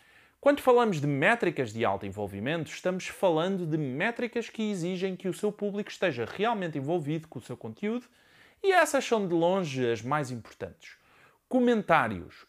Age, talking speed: 20-39, 160 wpm